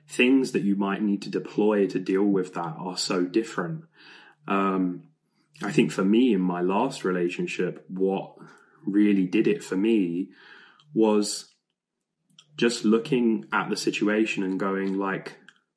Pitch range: 95-110 Hz